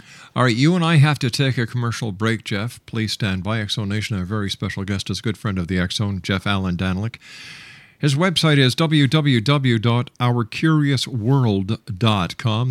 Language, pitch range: English, 105-140 Hz